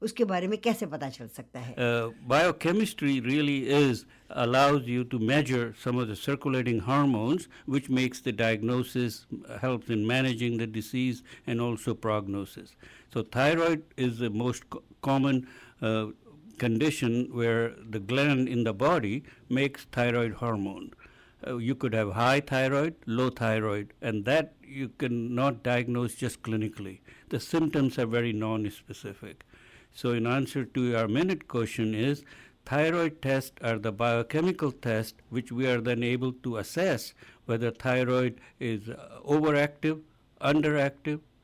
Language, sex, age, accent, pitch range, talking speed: English, male, 60-79, Indian, 115-140 Hz, 130 wpm